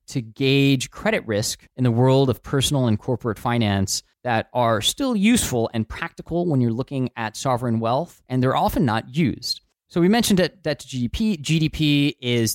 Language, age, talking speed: English, 20-39, 180 wpm